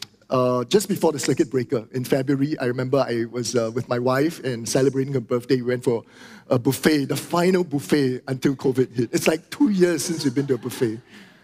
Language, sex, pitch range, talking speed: English, male, 140-195 Hz, 215 wpm